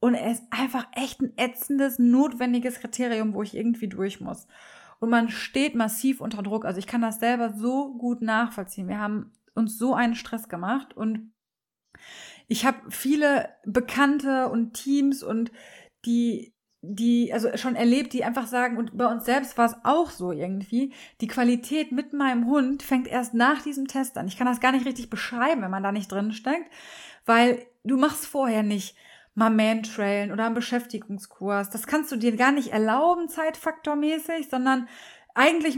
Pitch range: 225-275 Hz